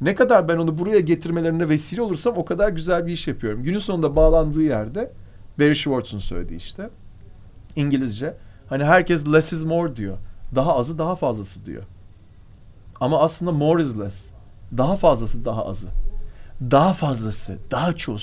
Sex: male